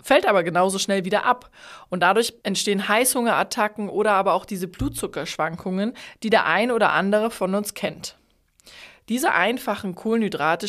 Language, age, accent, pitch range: German, 20-39, German, 180-220 Hz